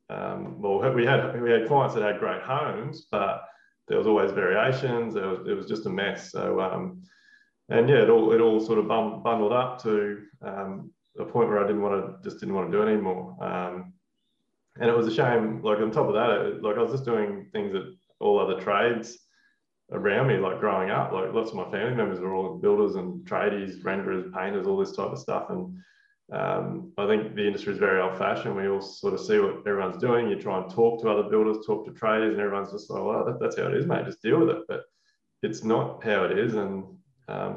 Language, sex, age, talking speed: English, male, 20-39, 230 wpm